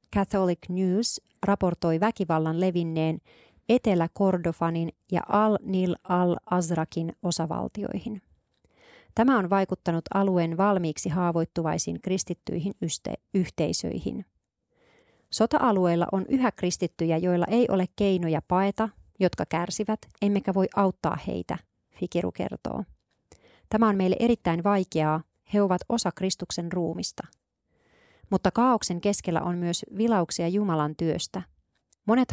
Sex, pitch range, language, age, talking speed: female, 165-200 Hz, Finnish, 30-49, 100 wpm